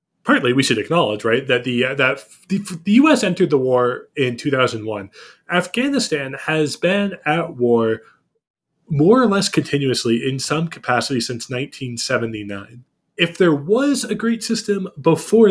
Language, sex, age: English, male, 20-39